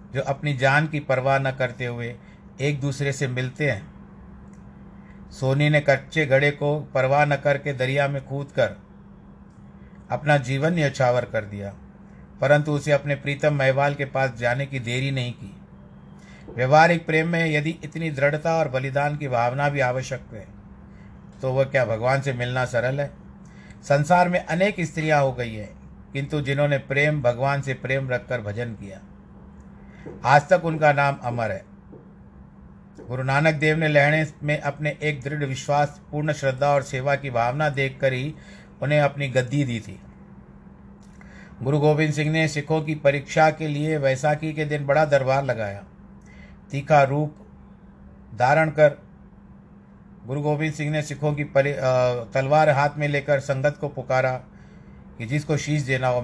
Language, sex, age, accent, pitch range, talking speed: Hindi, male, 50-69, native, 130-150 Hz, 155 wpm